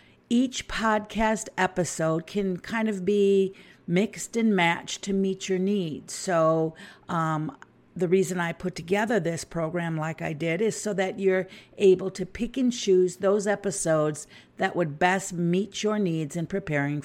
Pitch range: 165-195 Hz